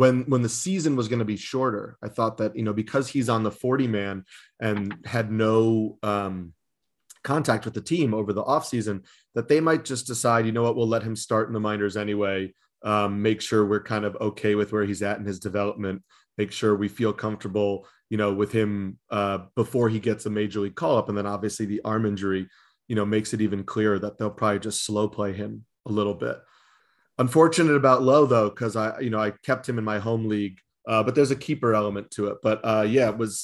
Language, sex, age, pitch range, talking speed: English, male, 30-49, 105-130 Hz, 230 wpm